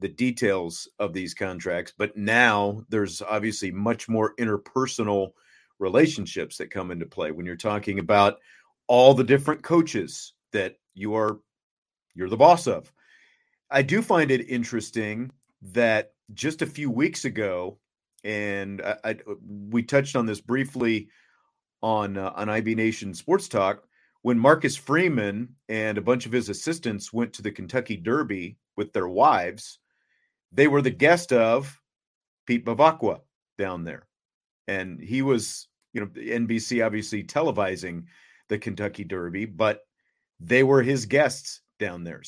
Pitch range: 105-140 Hz